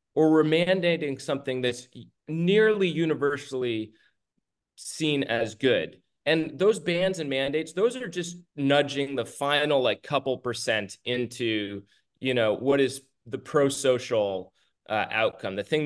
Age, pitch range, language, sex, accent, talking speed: 30-49, 120-170 Hz, English, male, American, 130 wpm